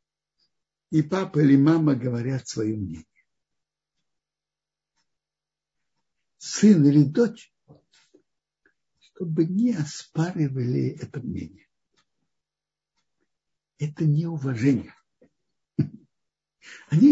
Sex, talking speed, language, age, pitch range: male, 65 wpm, Russian, 60-79, 120-165 Hz